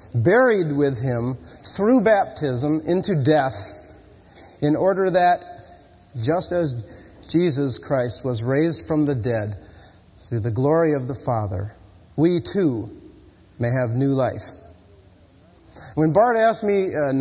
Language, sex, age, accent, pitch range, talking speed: English, male, 50-69, American, 110-155 Hz, 125 wpm